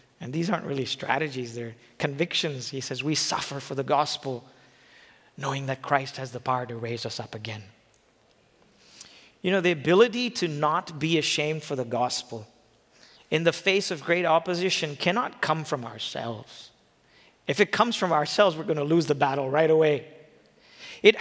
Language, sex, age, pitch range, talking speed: English, male, 40-59, 150-205 Hz, 170 wpm